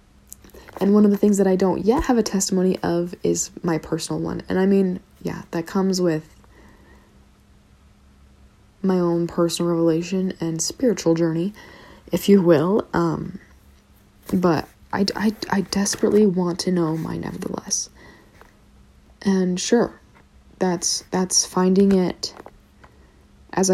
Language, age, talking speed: English, 20-39, 130 wpm